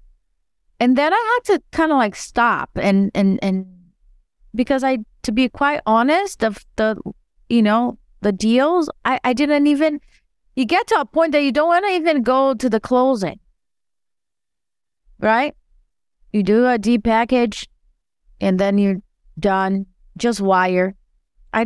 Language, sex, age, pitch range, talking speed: English, female, 30-49, 195-250 Hz, 160 wpm